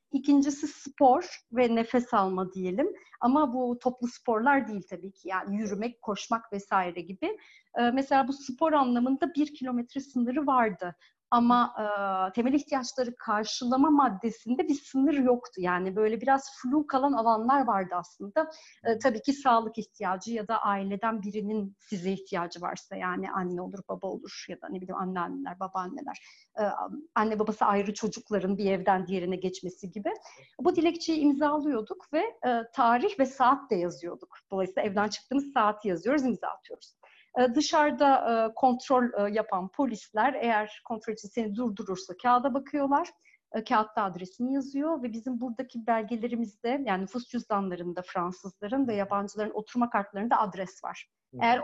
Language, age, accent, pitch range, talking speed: Turkish, 40-59, native, 200-270 Hz, 140 wpm